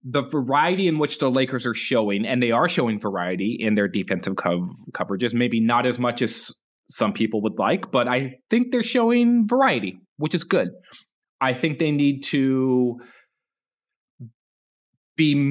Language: English